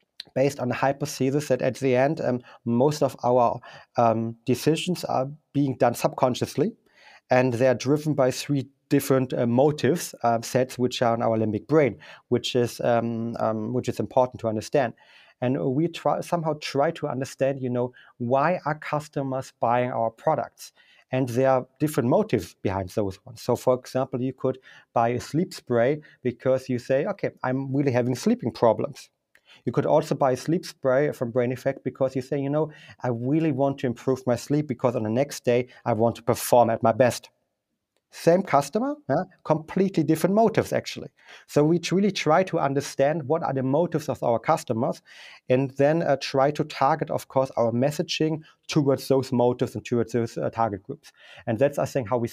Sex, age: male, 30-49